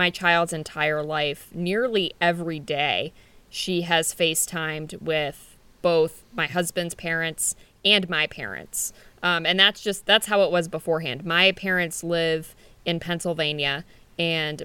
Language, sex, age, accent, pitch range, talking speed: English, female, 20-39, American, 155-185 Hz, 135 wpm